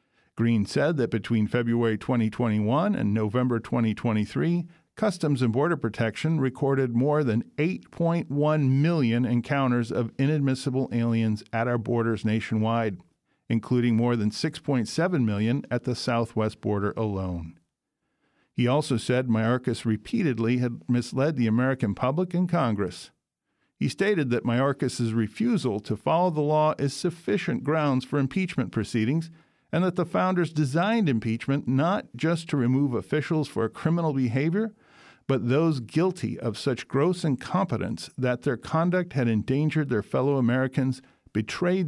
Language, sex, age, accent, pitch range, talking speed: English, male, 50-69, American, 115-155 Hz, 135 wpm